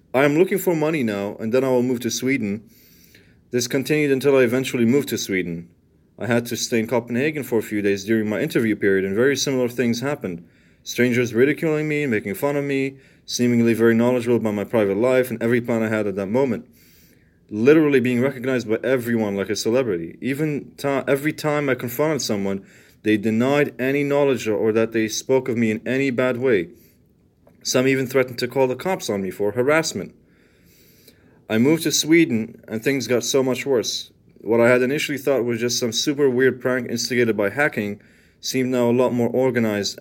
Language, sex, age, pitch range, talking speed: English, male, 30-49, 115-135 Hz, 200 wpm